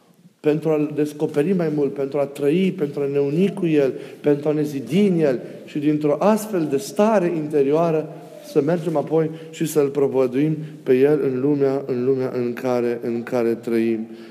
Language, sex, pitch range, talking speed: Romanian, male, 145-195 Hz, 170 wpm